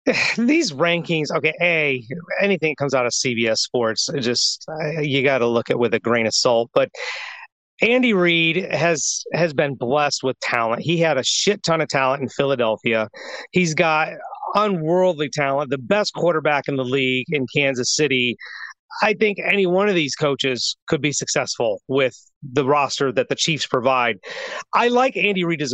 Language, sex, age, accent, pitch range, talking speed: English, male, 40-59, American, 135-180 Hz, 175 wpm